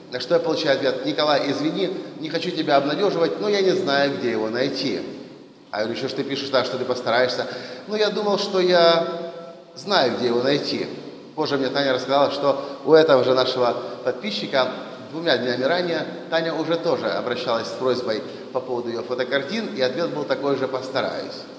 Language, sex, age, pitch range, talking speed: Russian, male, 30-49, 130-175 Hz, 190 wpm